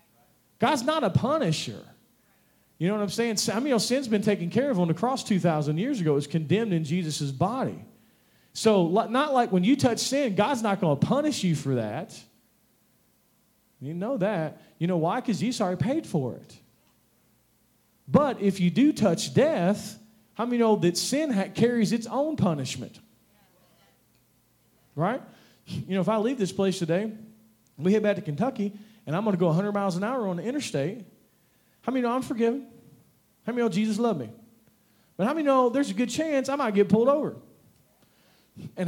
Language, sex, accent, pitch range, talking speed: English, male, American, 180-245 Hz, 190 wpm